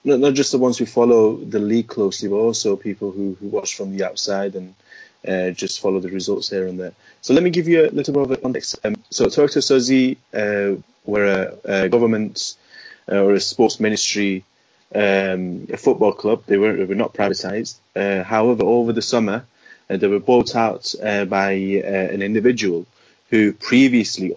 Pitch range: 100-120 Hz